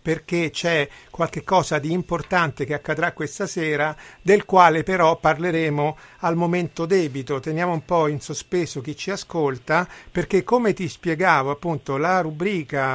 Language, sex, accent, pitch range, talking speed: Italian, male, native, 145-175 Hz, 145 wpm